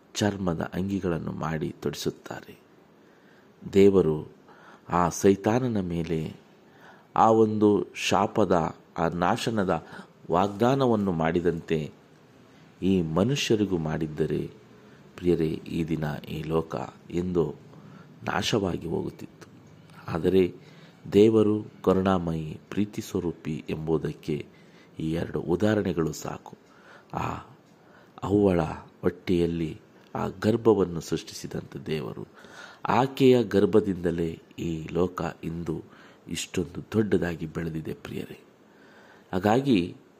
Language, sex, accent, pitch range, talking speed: Kannada, male, native, 85-105 Hz, 80 wpm